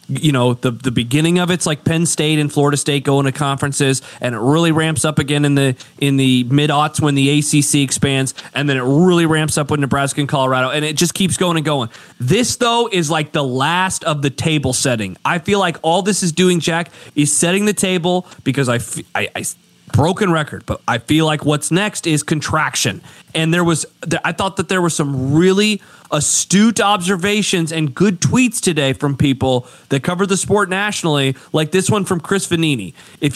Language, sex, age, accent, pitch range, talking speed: English, male, 30-49, American, 140-180 Hz, 205 wpm